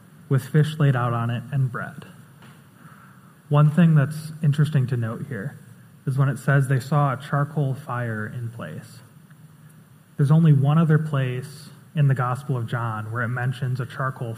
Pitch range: 130-155 Hz